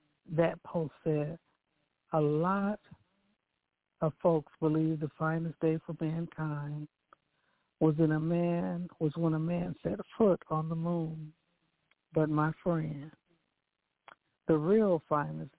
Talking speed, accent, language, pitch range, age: 125 wpm, American, English, 145-170 Hz, 60-79